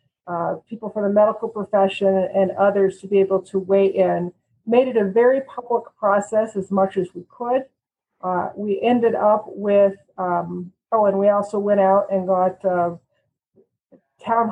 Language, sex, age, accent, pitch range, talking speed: English, female, 50-69, American, 190-215 Hz, 170 wpm